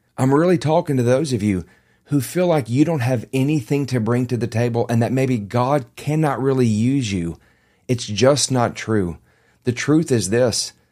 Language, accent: English, American